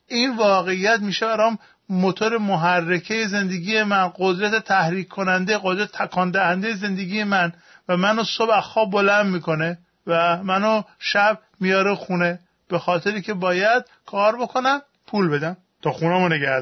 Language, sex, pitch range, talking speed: Persian, male, 170-220 Hz, 135 wpm